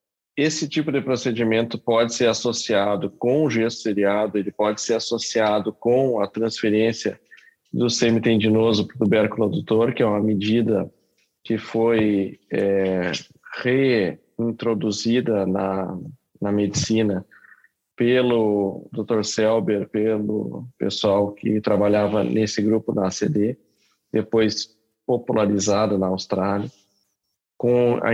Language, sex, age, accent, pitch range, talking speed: Portuguese, male, 20-39, Brazilian, 100-115 Hz, 110 wpm